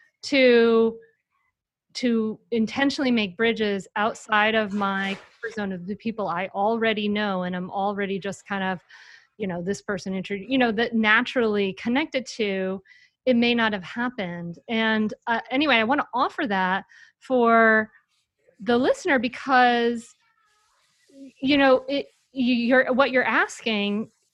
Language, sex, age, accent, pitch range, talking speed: English, female, 30-49, American, 205-265 Hz, 140 wpm